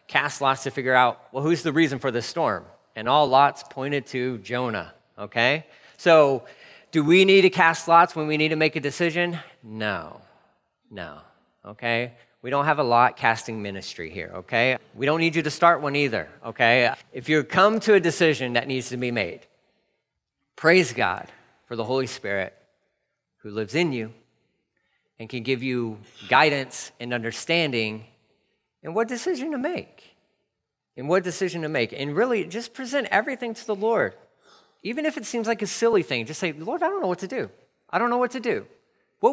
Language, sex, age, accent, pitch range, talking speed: English, male, 40-59, American, 125-185 Hz, 190 wpm